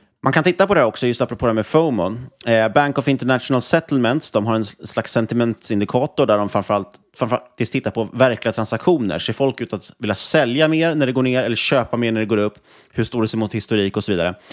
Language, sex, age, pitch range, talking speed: Swedish, male, 30-49, 95-125 Hz, 235 wpm